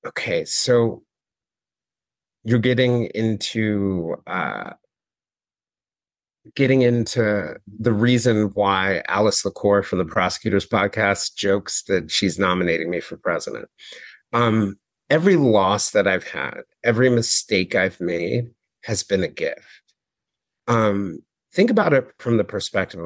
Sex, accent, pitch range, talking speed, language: male, American, 100-115 Hz, 115 wpm, English